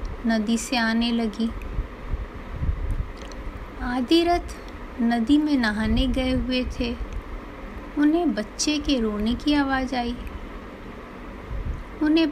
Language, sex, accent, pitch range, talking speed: Hindi, female, native, 235-290 Hz, 95 wpm